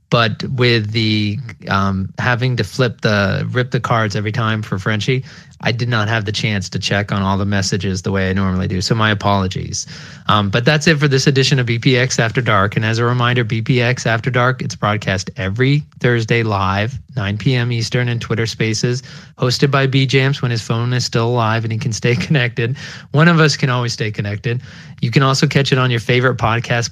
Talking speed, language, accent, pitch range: 210 wpm, English, American, 110-135 Hz